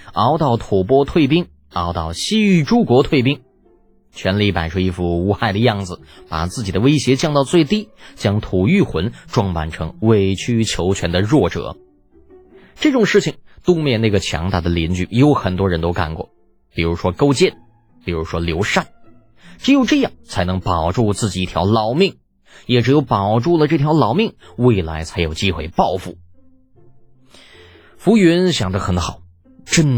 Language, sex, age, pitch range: Chinese, male, 20-39, 85-130 Hz